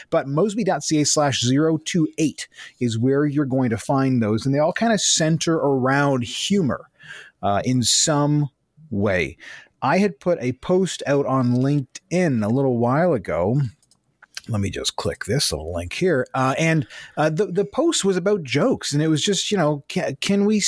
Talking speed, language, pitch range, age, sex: 175 wpm, English, 120-160 Hz, 30-49, male